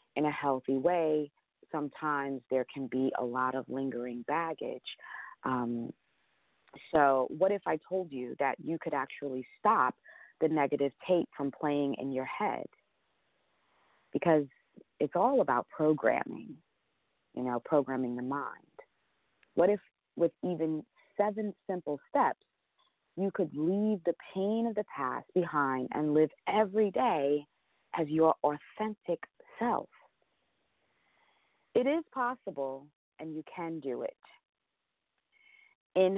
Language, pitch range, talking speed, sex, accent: English, 140-195 Hz, 125 wpm, female, American